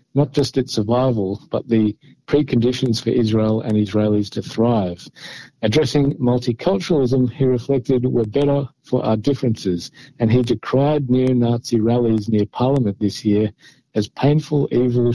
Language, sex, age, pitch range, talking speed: Hebrew, male, 50-69, 105-130 Hz, 135 wpm